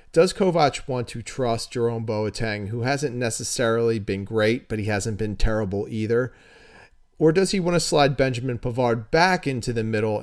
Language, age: English, 40-59